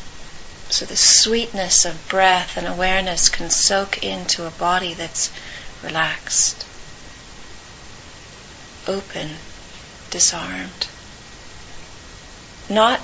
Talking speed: 80 wpm